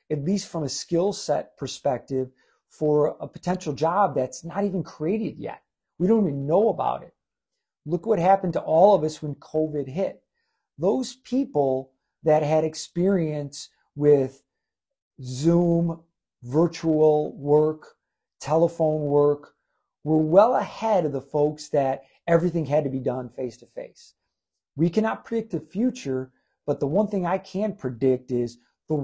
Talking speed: 150 wpm